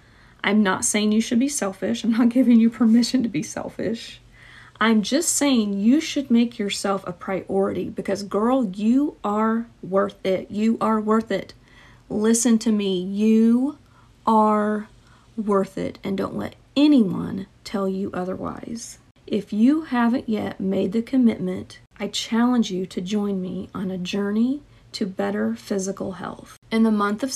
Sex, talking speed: female, 160 wpm